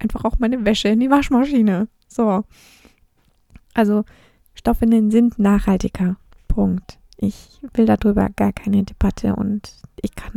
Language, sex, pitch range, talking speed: German, female, 190-230 Hz, 125 wpm